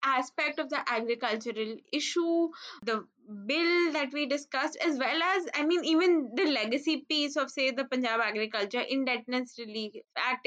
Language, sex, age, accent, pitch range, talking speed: English, female, 10-29, Indian, 235-315 Hz, 155 wpm